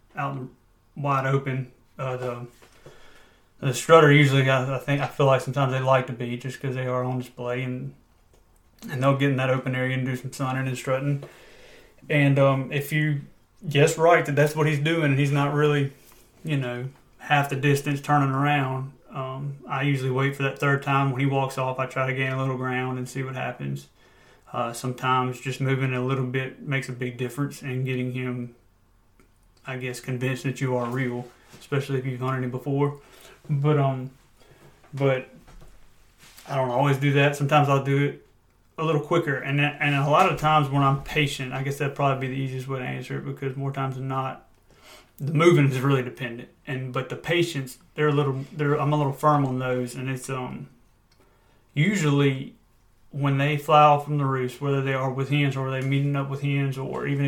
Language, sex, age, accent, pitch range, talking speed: English, male, 30-49, American, 130-145 Hz, 205 wpm